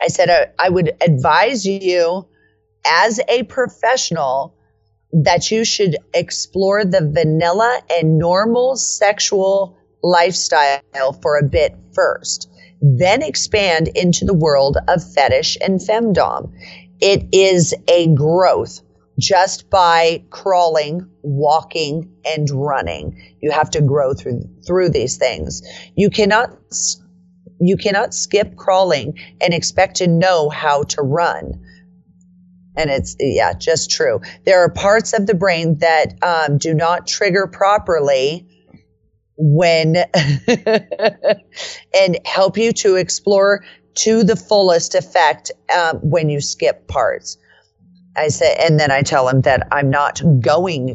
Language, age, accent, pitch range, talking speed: English, 40-59, American, 145-190 Hz, 125 wpm